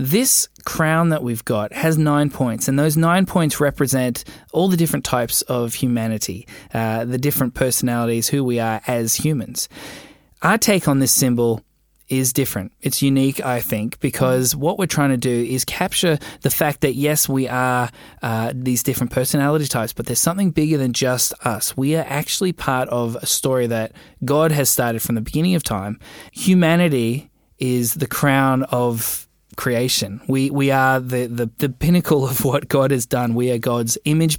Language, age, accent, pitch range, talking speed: English, 20-39, Australian, 120-150 Hz, 180 wpm